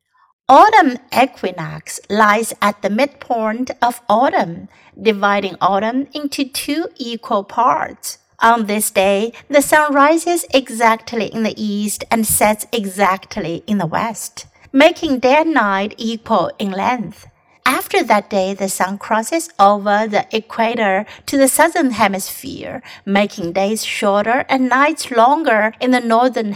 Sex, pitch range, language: female, 205-275 Hz, Chinese